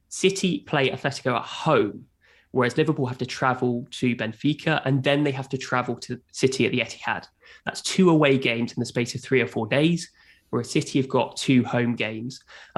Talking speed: 200 wpm